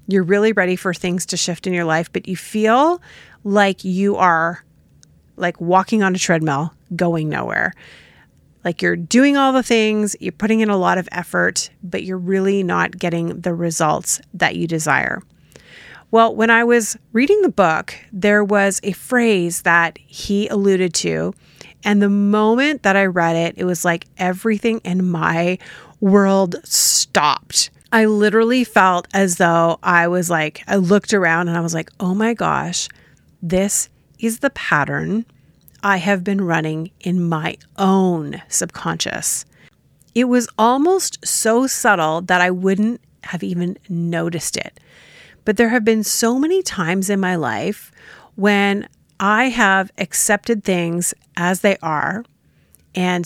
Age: 30-49